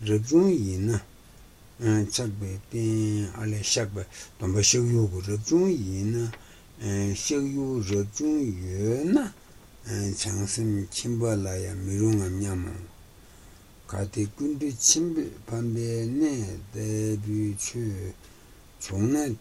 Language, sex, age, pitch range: Italian, male, 60-79, 95-115 Hz